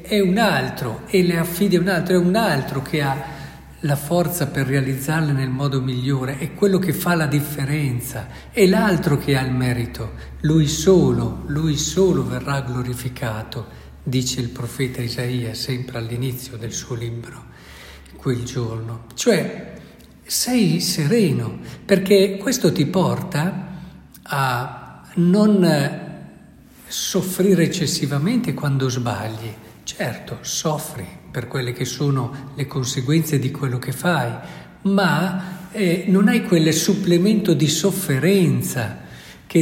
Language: Italian